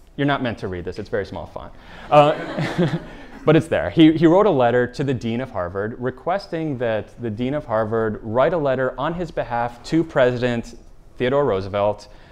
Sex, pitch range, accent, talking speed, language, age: male, 110-145 Hz, American, 195 wpm, English, 30-49